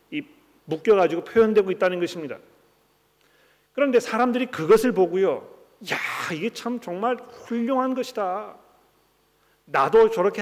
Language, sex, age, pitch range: Korean, male, 40-59, 155-225 Hz